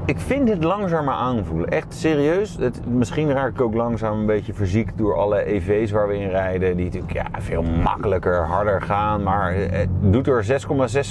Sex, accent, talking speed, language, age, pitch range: male, Dutch, 190 wpm, Dutch, 30-49, 95-135 Hz